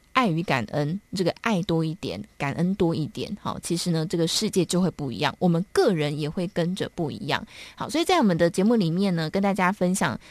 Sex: female